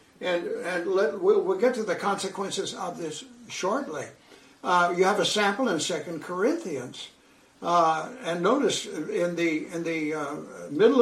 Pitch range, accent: 175-260 Hz, American